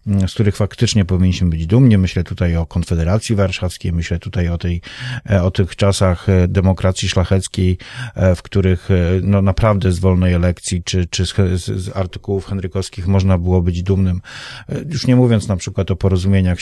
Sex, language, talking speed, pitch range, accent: male, Polish, 160 wpm, 90-110 Hz, native